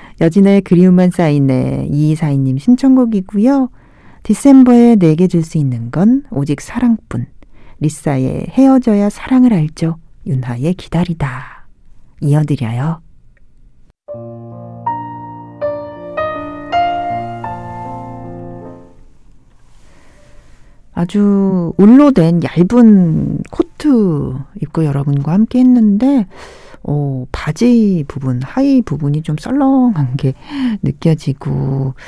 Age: 40-59